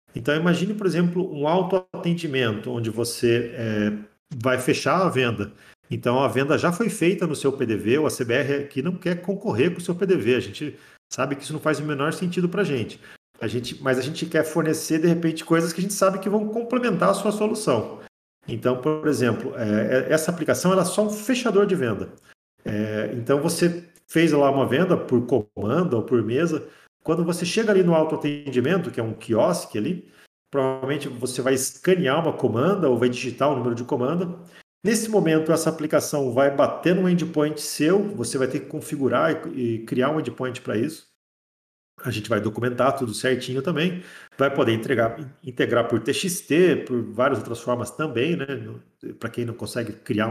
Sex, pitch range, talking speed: male, 120-175 Hz, 190 wpm